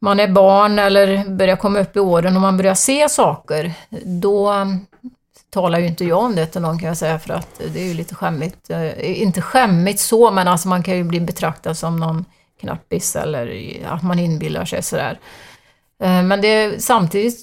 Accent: native